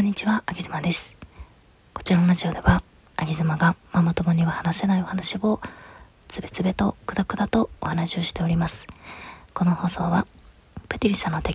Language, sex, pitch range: Japanese, female, 170-200 Hz